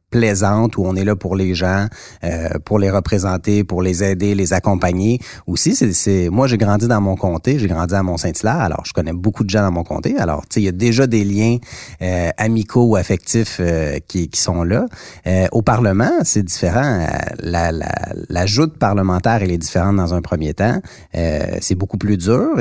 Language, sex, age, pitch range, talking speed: French, male, 30-49, 90-115 Hz, 200 wpm